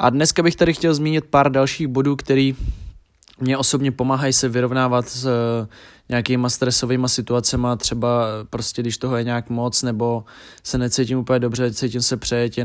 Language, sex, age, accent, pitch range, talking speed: Czech, male, 20-39, native, 115-130 Hz, 165 wpm